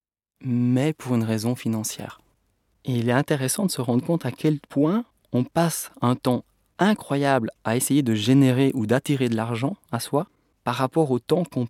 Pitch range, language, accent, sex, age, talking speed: 115-145 Hz, French, French, male, 20-39, 185 wpm